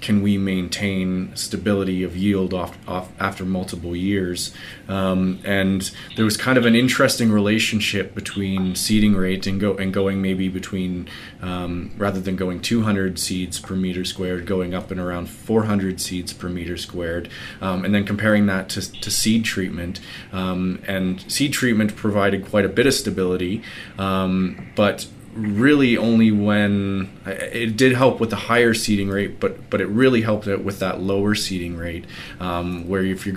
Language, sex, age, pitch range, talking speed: English, male, 30-49, 95-110 Hz, 170 wpm